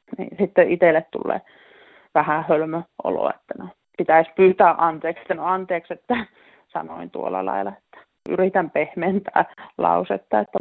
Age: 30-49